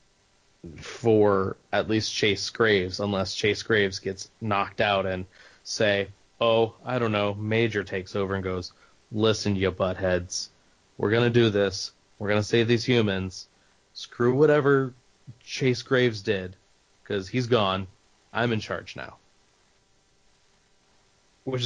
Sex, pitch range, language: male, 95-115 Hz, English